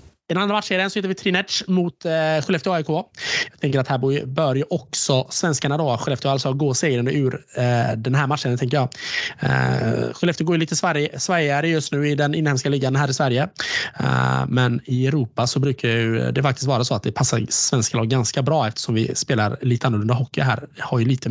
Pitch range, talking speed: 130-175 Hz, 220 wpm